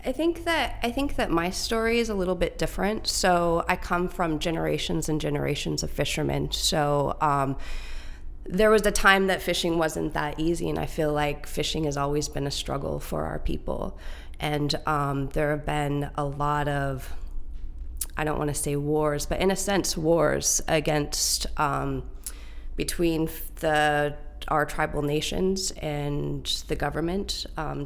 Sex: female